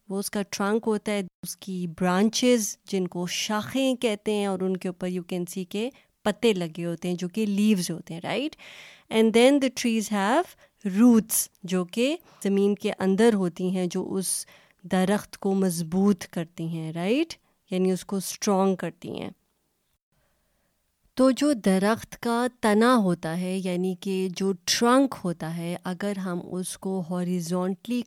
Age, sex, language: 20-39, female, Urdu